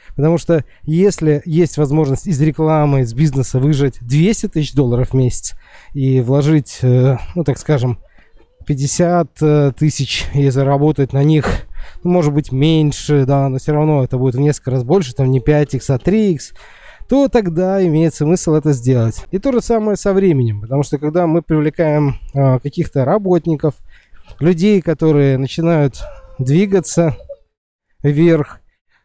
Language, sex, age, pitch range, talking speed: Russian, male, 20-39, 135-165 Hz, 145 wpm